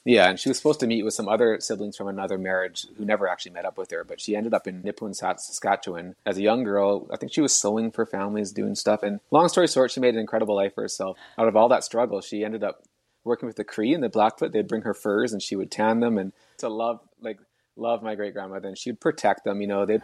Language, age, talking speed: English, 20-39, 270 wpm